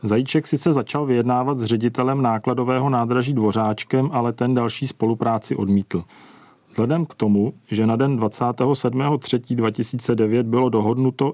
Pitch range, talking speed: 110-130 Hz, 140 wpm